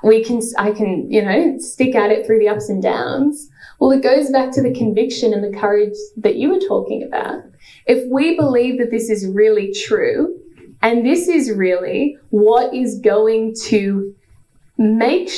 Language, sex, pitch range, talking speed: English, female, 210-280 Hz, 180 wpm